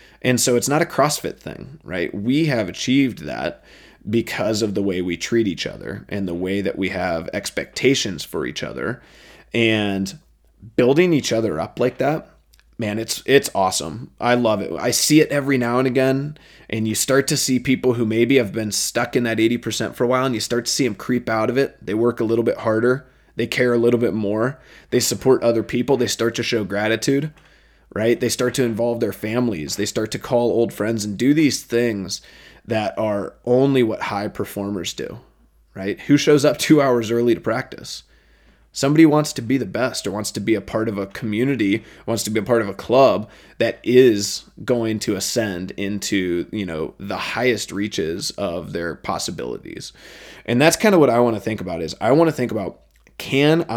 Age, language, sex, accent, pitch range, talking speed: 20-39, English, male, American, 105-130 Hz, 210 wpm